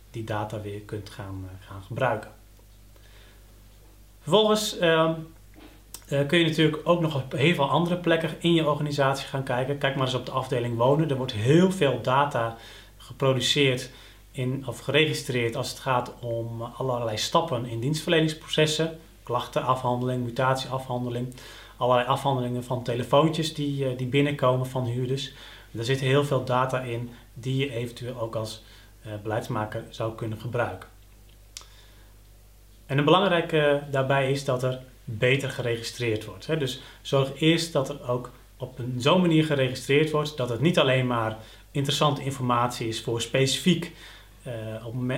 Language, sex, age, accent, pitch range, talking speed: Dutch, male, 40-59, Dutch, 115-140 Hz, 145 wpm